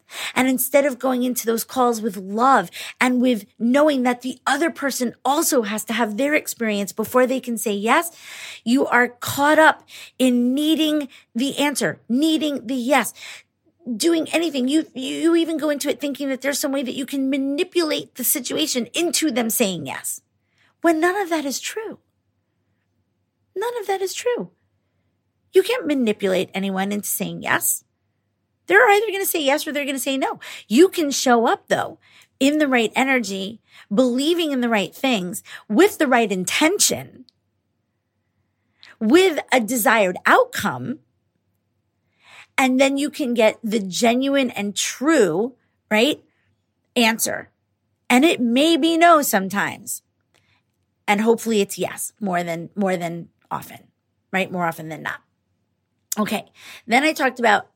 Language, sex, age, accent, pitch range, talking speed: English, female, 40-59, American, 215-300 Hz, 155 wpm